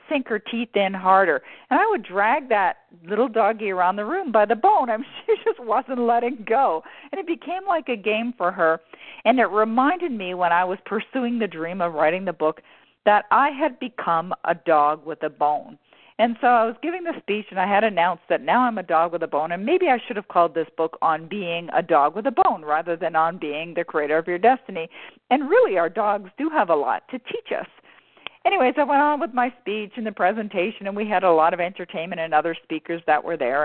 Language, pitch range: English, 175-285 Hz